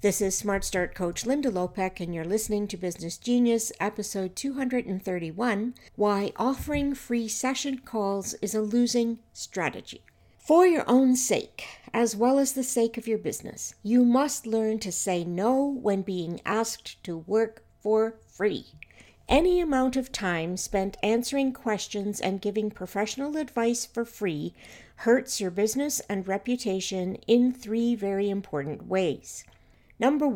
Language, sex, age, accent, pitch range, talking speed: English, female, 60-79, American, 195-245 Hz, 145 wpm